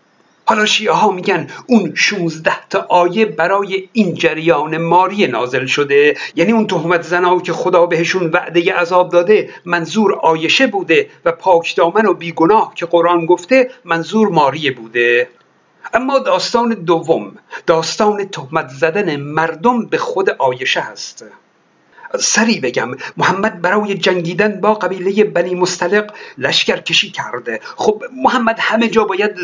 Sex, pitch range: male, 175-235 Hz